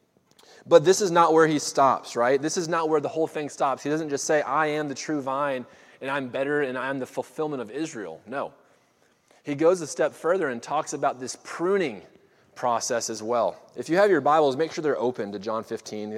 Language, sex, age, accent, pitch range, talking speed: English, male, 20-39, American, 120-155 Hz, 225 wpm